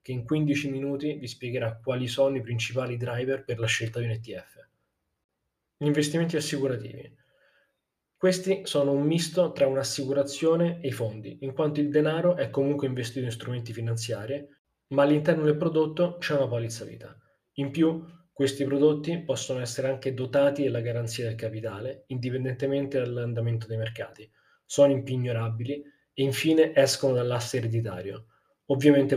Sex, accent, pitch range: male, native, 120-145 Hz